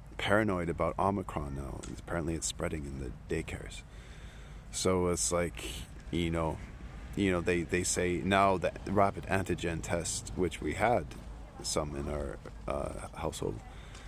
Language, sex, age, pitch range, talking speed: English, male, 40-59, 80-95 Hz, 140 wpm